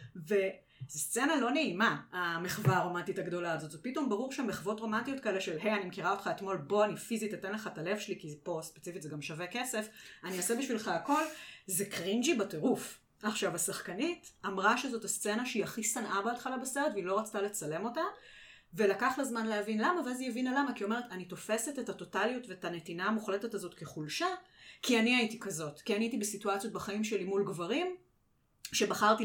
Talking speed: 155 wpm